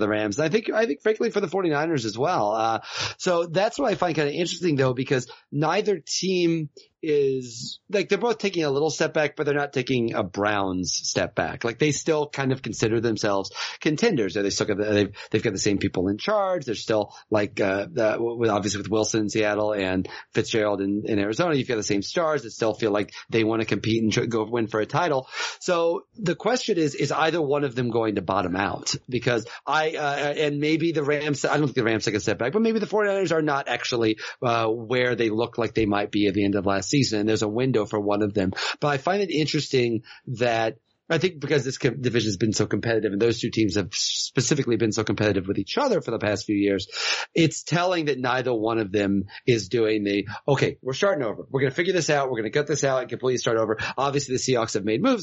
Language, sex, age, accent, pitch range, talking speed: English, male, 30-49, American, 110-150 Hz, 250 wpm